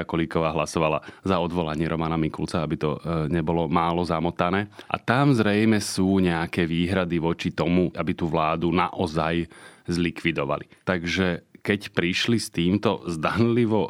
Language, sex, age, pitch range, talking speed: Slovak, male, 30-49, 85-100 Hz, 130 wpm